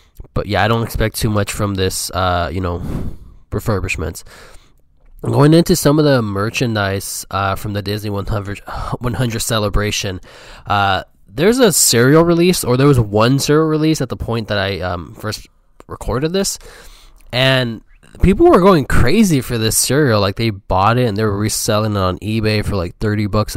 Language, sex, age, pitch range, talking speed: English, male, 20-39, 100-125 Hz, 180 wpm